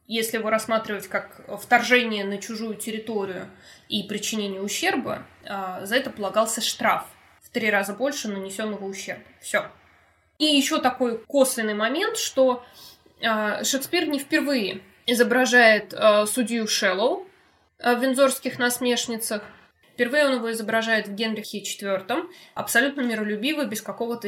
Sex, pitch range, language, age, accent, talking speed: female, 210-270 Hz, Russian, 20-39, native, 120 wpm